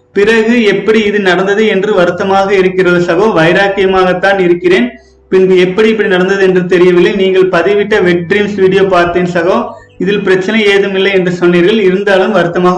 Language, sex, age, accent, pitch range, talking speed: Tamil, male, 30-49, native, 180-210 Hz, 140 wpm